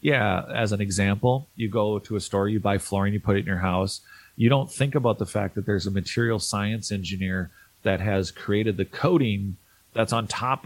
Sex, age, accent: male, 30-49, American